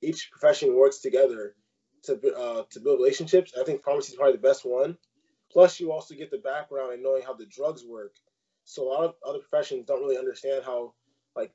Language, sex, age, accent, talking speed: English, male, 20-39, American, 210 wpm